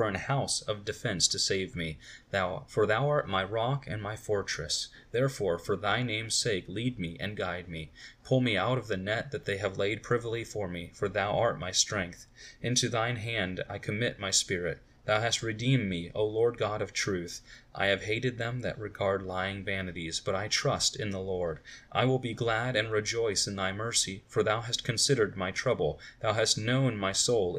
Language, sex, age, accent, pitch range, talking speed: English, male, 30-49, American, 95-120 Hz, 205 wpm